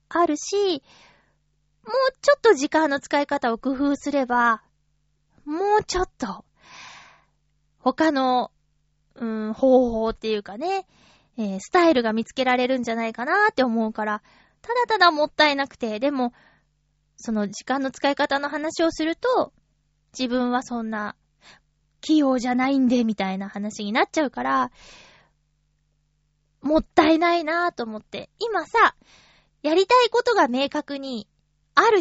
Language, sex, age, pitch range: Japanese, female, 20-39, 215-320 Hz